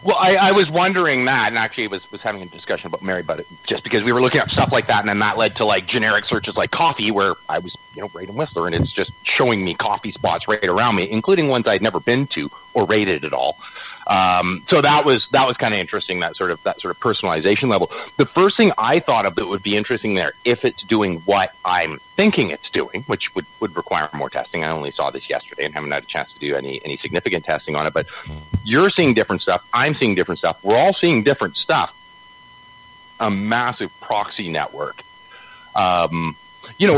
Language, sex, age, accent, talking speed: English, male, 30-49, American, 235 wpm